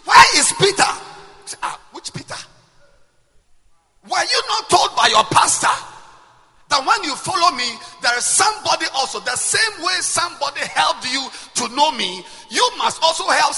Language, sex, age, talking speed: English, male, 50-69, 155 wpm